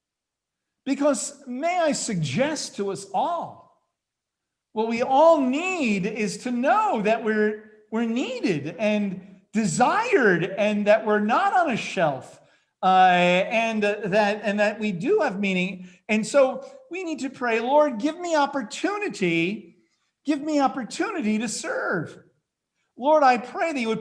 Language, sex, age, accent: English, male, 50-69, American